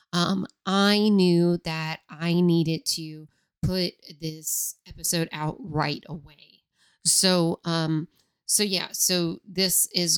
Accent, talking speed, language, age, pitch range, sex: American, 120 wpm, English, 30-49, 165-185 Hz, female